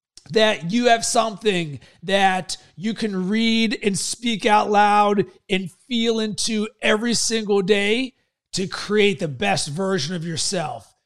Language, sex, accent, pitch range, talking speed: English, male, American, 190-230 Hz, 135 wpm